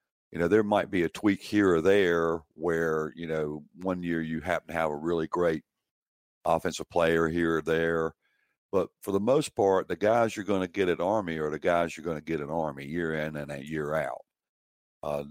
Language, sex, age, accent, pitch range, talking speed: English, male, 60-79, American, 80-100 Hz, 220 wpm